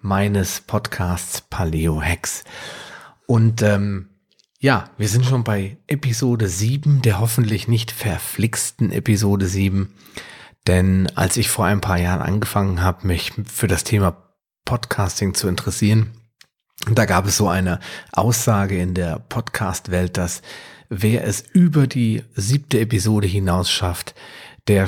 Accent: German